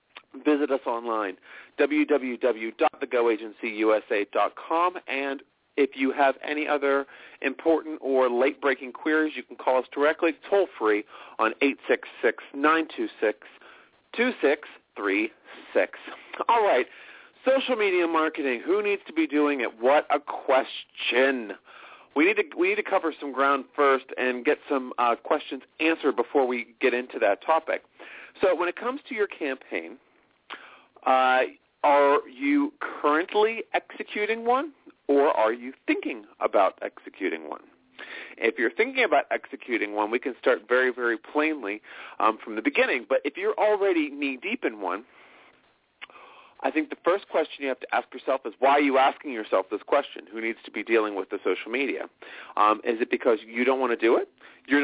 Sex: male